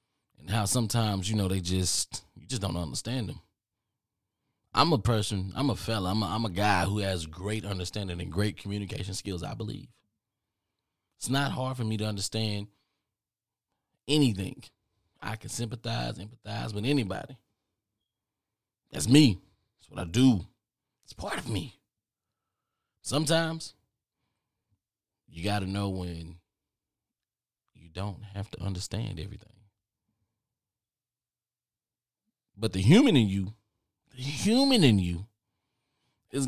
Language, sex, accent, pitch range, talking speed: English, male, American, 100-125 Hz, 130 wpm